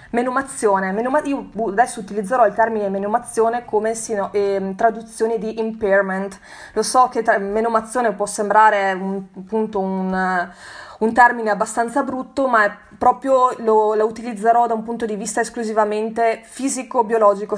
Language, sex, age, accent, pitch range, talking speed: Italian, female, 20-39, native, 195-235 Hz, 115 wpm